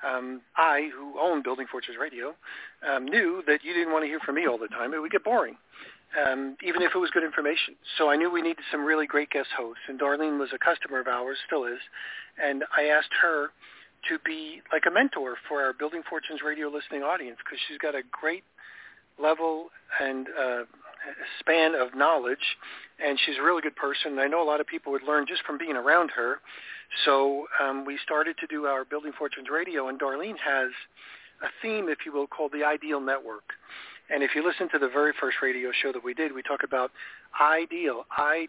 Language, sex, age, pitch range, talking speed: English, male, 50-69, 135-160 Hz, 215 wpm